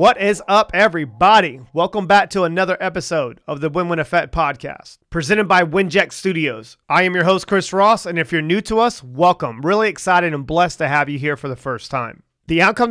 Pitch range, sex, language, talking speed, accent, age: 145-185 Hz, male, English, 210 wpm, American, 40-59